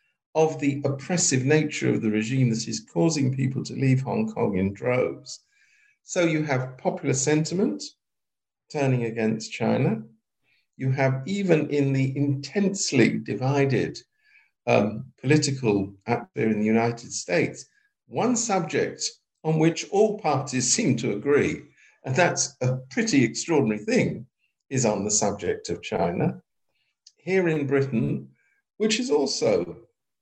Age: 50-69